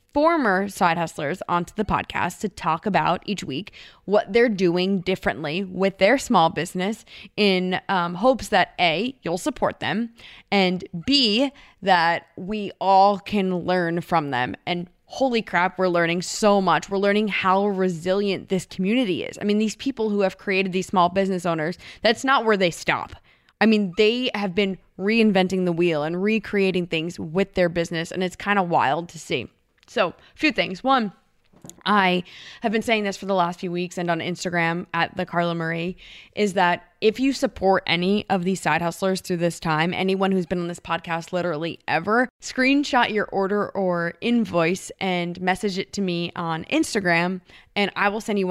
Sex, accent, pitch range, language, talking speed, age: female, American, 175-205 Hz, English, 180 wpm, 20-39